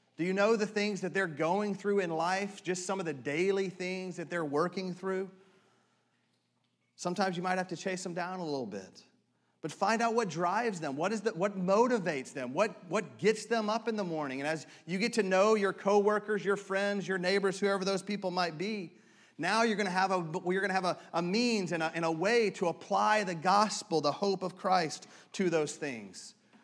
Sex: male